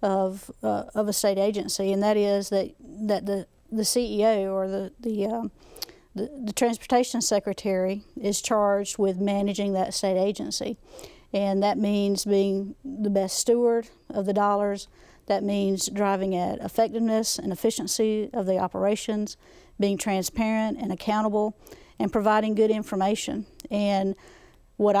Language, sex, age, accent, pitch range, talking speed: English, female, 50-69, American, 195-220 Hz, 140 wpm